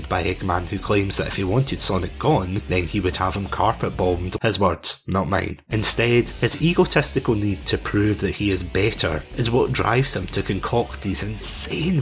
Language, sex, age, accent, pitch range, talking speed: English, male, 30-49, British, 95-125 Hz, 190 wpm